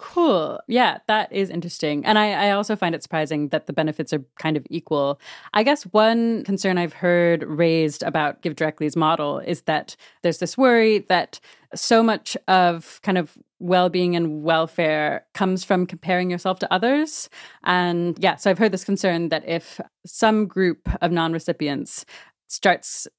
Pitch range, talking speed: 160-200 Hz, 165 wpm